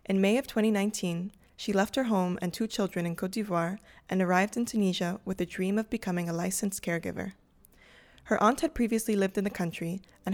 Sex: female